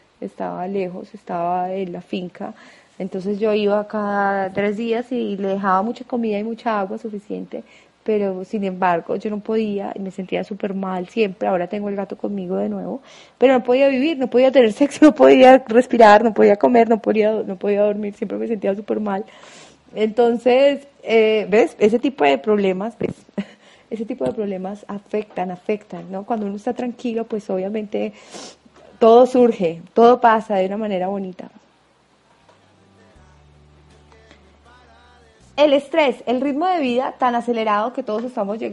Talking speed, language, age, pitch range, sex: 160 wpm, Spanish, 20-39, 195-230 Hz, female